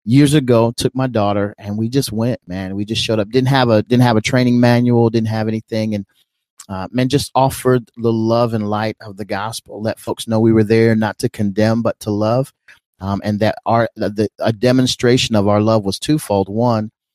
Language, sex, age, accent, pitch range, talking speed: English, male, 30-49, American, 105-120 Hz, 220 wpm